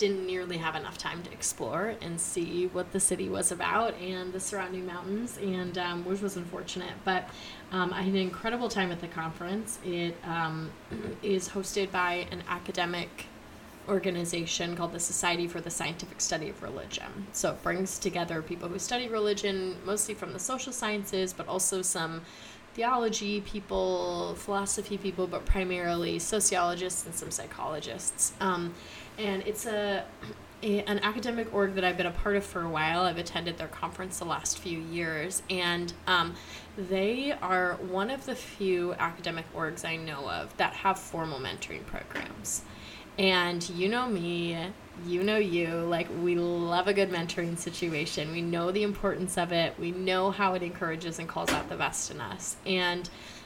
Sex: female